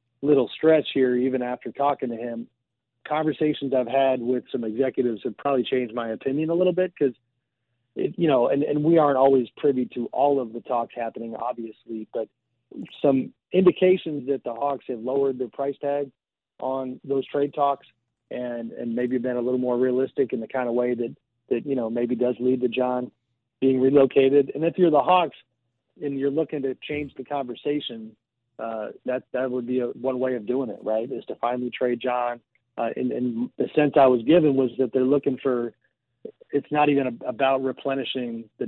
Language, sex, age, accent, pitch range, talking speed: English, male, 40-59, American, 120-135 Hz, 195 wpm